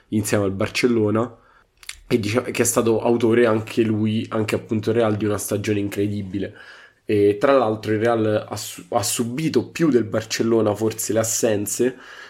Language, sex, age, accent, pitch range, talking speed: Italian, male, 20-39, native, 105-115 Hz, 135 wpm